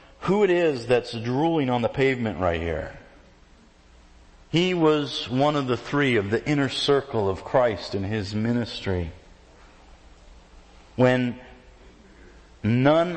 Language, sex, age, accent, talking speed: English, male, 40-59, American, 125 wpm